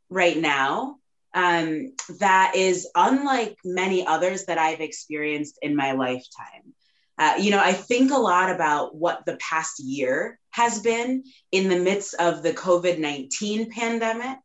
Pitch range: 170-225 Hz